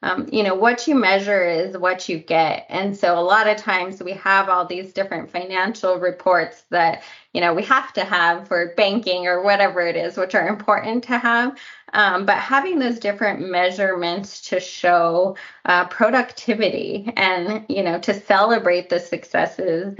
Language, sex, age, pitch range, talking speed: English, female, 20-39, 175-210 Hz, 175 wpm